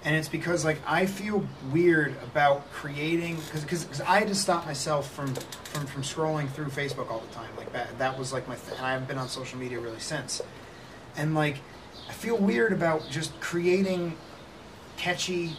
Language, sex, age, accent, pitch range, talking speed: English, male, 30-49, American, 130-160 Hz, 190 wpm